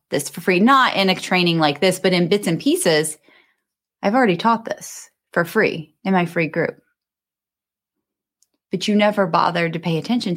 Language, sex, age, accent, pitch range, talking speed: English, female, 30-49, American, 150-200 Hz, 180 wpm